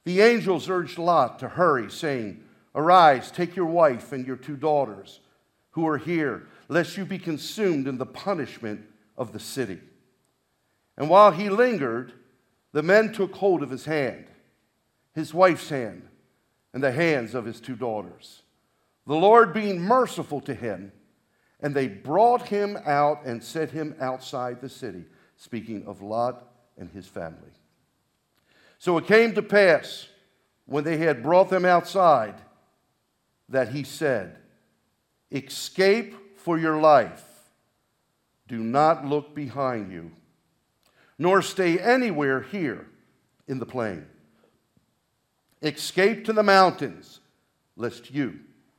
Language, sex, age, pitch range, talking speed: English, male, 50-69, 125-180 Hz, 135 wpm